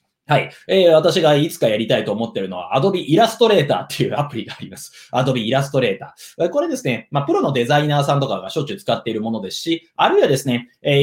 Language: Japanese